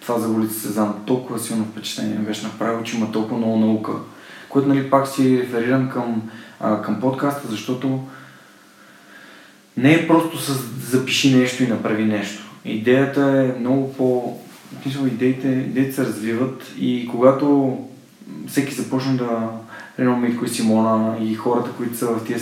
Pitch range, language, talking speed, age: 110-130 Hz, Bulgarian, 150 wpm, 20-39